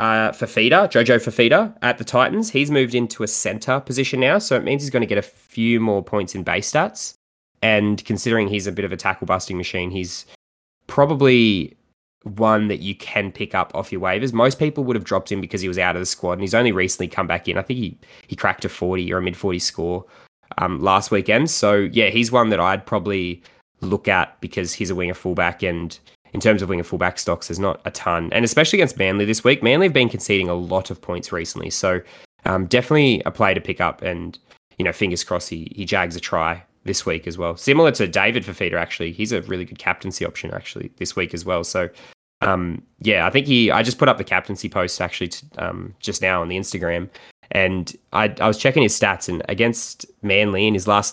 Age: 20-39